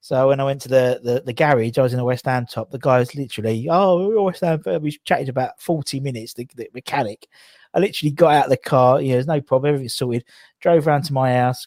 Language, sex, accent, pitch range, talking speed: English, male, British, 135-185 Hz, 260 wpm